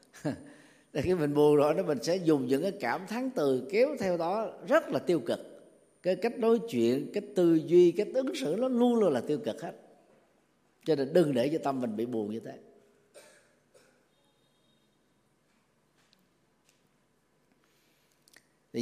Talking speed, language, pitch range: 155 wpm, Vietnamese, 125-190 Hz